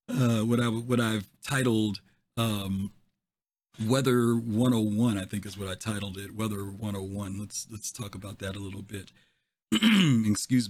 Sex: male